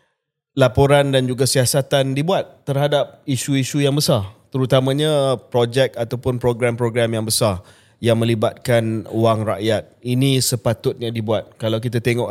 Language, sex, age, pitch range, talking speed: Malay, male, 20-39, 115-140 Hz, 120 wpm